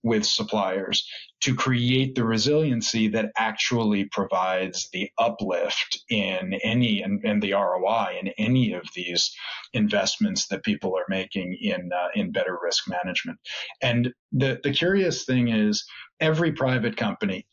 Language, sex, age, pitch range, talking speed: English, male, 40-59, 105-130 Hz, 135 wpm